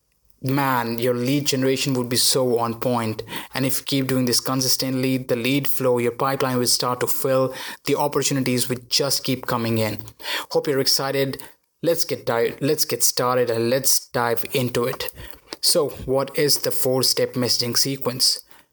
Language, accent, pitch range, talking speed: English, Indian, 125-140 Hz, 175 wpm